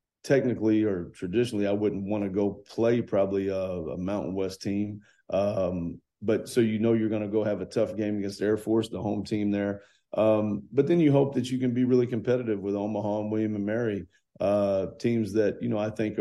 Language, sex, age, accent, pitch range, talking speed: English, male, 40-59, American, 95-110 Hz, 220 wpm